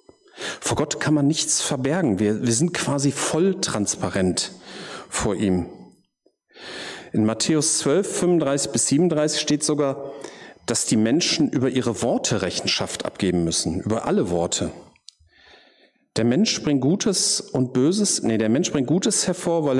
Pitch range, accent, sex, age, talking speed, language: 110-155 Hz, German, male, 40-59, 140 wpm, German